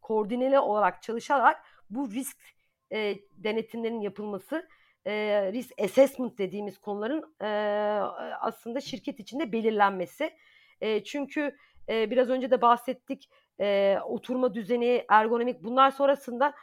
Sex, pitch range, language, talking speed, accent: female, 210-275 Hz, Turkish, 110 wpm, native